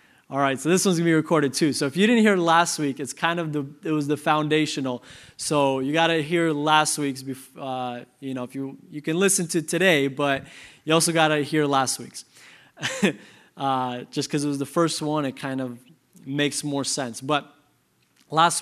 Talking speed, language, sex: 215 wpm, English, male